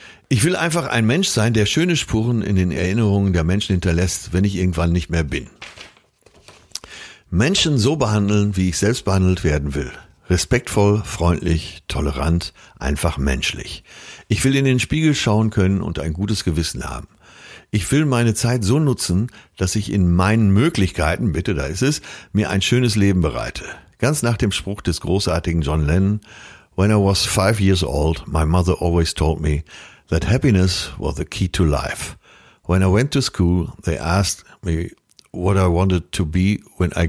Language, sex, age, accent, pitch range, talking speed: German, male, 60-79, German, 85-110 Hz, 175 wpm